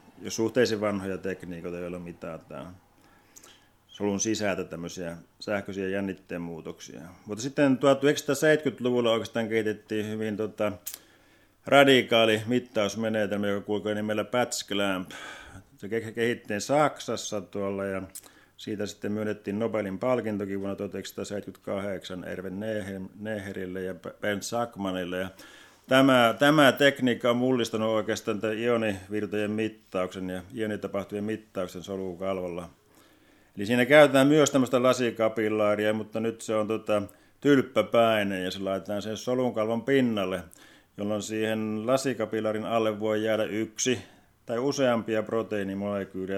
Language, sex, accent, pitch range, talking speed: Finnish, male, native, 95-115 Hz, 105 wpm